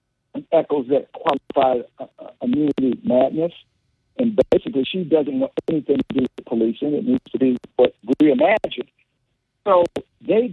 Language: English